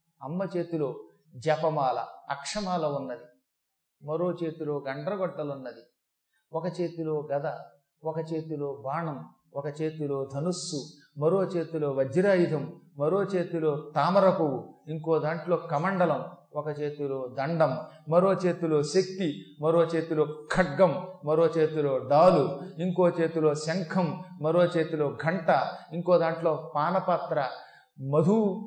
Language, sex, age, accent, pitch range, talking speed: Telugu, male, 30-49, native, 150-180 Hz, 105 wpm